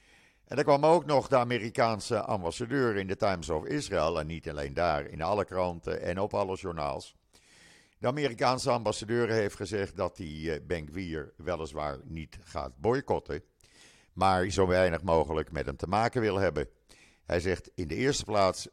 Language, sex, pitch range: Dutch, male, 90-125 Hz